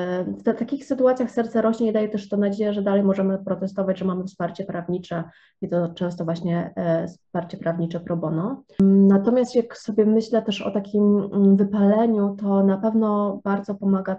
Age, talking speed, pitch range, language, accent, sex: 20-39, 180 wpm, 180-205 Hz, English, Polish, female